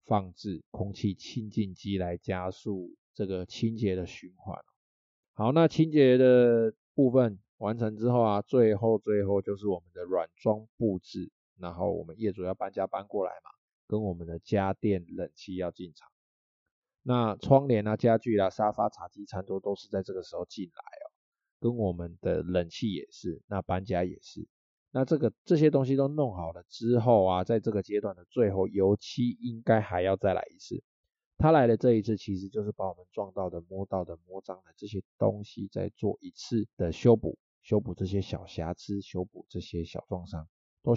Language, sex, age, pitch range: Chinese, male, 20-39, 95-115 Hz